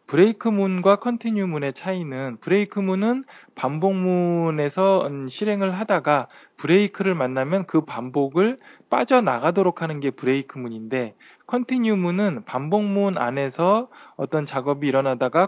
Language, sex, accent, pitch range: Korean, male, native, 140-200 Hz